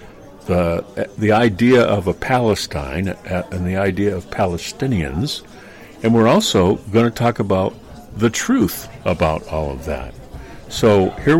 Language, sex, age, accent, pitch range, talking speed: English, male, 60-79, American, 90-110 Hz, 135 wpm